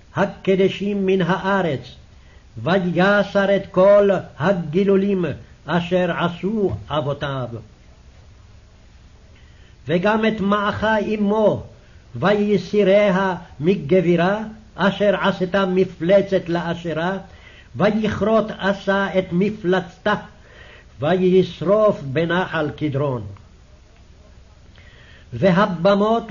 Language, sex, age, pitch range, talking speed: English, male, 60-79, 150-200 Hz, 60 wpm